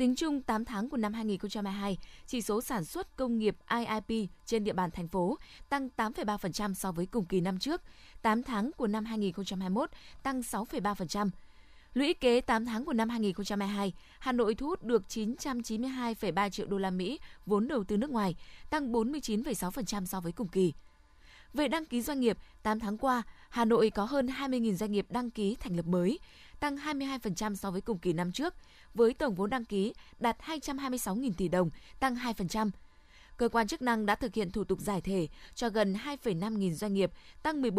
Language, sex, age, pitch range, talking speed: Vietnamese, female, 20-39, 195-245 Hz, 190 wpm